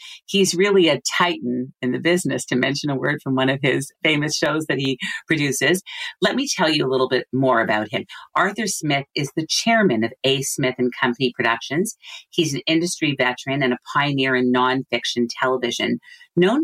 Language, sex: English, female